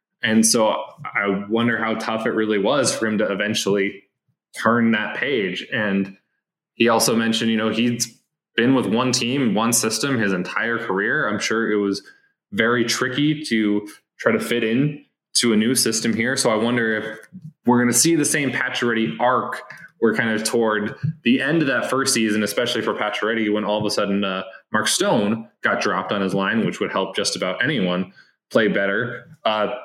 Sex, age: male, 20-39